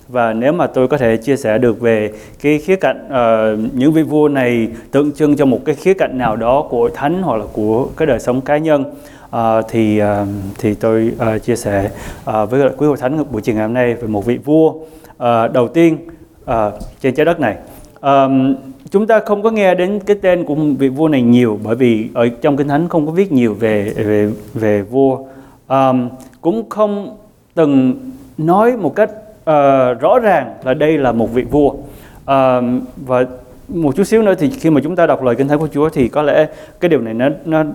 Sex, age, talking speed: male, 20-39, 220 wpm